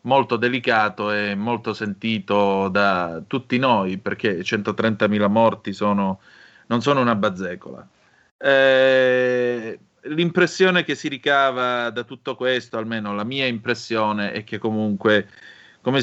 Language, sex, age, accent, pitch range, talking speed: Italian, male, 30-49, native, 105-125 Hz, 120 wpm